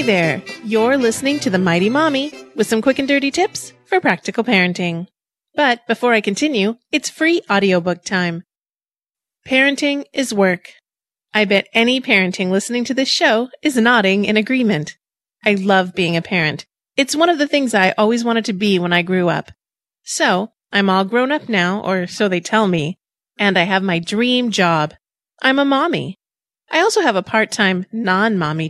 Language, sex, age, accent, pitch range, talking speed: English, female, 30-49, American, 190-265 Hz, 180 wpm